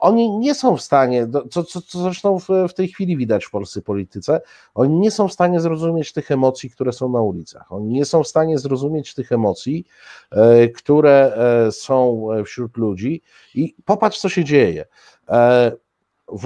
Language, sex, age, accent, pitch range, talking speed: Polish, male, 50-69, native, 105-150 Hz, 170 wpm